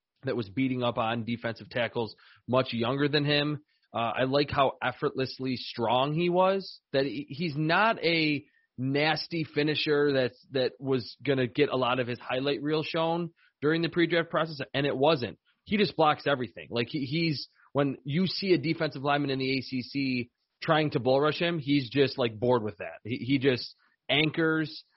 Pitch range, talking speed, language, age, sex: 125-150 Hz, 185 wpm, English, 30-49, male